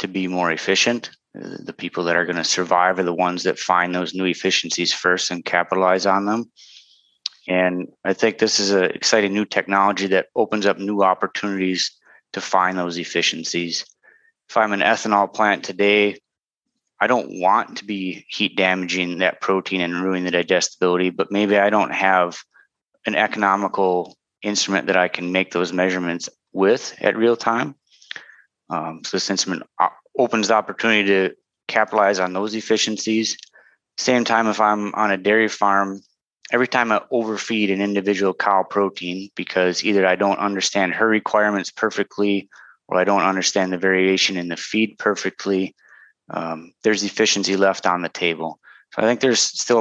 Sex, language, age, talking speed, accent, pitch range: male, English, 30-49, 165 wpm, American, 90-105 Hz